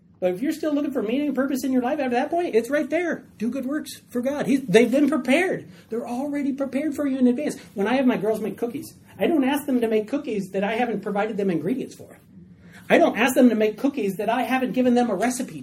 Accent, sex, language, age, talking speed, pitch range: American, male, English, 40-59, 260 wpm, 195-265 Hz